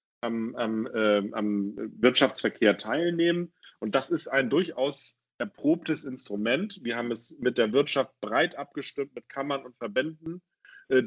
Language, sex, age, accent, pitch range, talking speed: German, male, 40-59, German, 115-140 Hz, 140 wpm